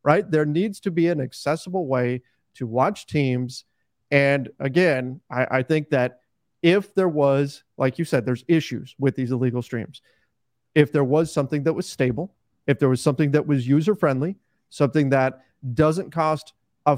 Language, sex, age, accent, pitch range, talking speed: English, male, 40-59, American, 135-180 Hz, 170 wpm